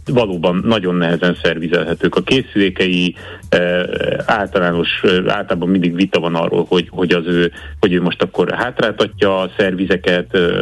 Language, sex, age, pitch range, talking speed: Hungarian, male, 30-49, 85-100 Hz, 145 wpm